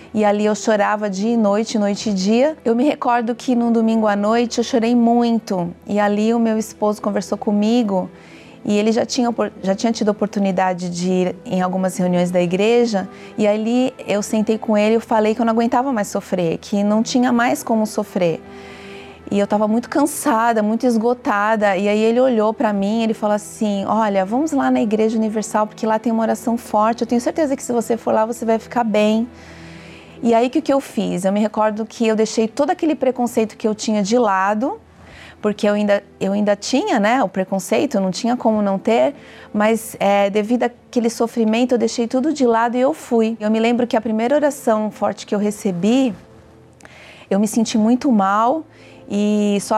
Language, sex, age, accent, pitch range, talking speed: Portuguese, female, 30-49, Brazilian, 205-235 Hz, 205 wpm